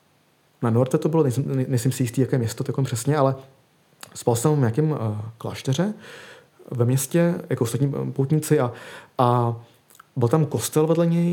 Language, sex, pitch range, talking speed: Czech, male, 115-145 Hz, 175 wpm